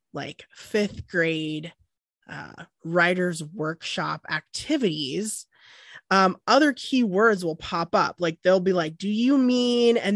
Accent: American